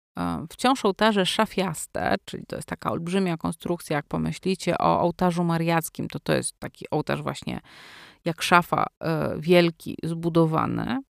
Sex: female